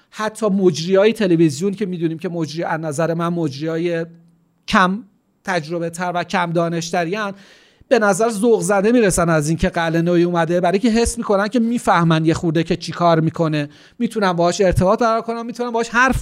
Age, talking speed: 40-59, 170 wpm